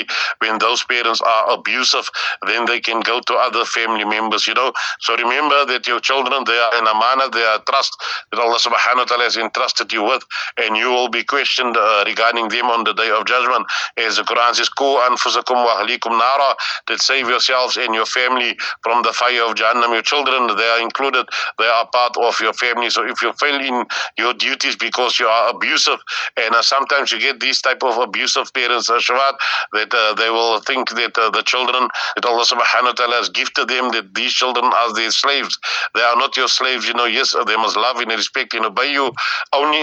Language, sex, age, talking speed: English, male, 50-69, 210 wpm